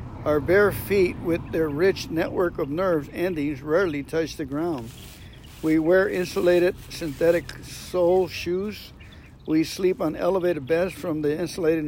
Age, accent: 60-79, American